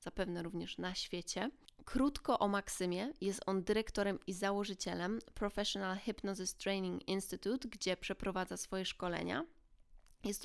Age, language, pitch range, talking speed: 20-39, Polish, 185-220 Hz, 120 wpm